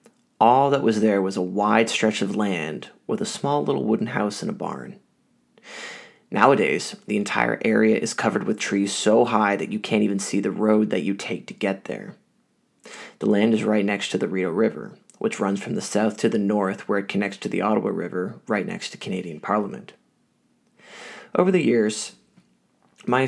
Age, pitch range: 20-39, 100-130 Hz